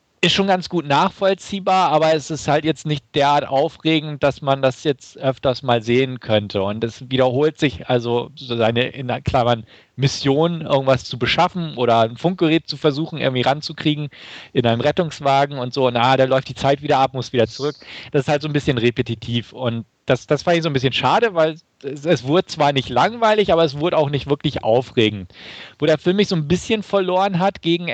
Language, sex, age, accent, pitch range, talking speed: German, male, 40-59, German, 120-155 Hz, 210 wpm